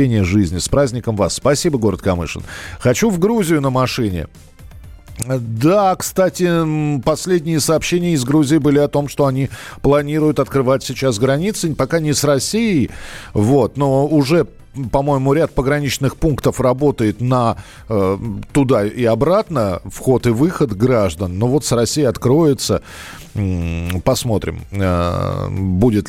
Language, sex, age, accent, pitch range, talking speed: Russian, male, 40-59, native, 105-150 Hz, 120 wpm